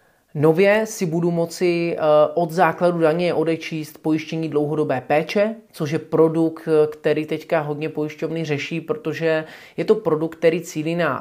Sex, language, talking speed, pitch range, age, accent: male, Czech, 140 wpm, 145-165 Hz, 30-49, native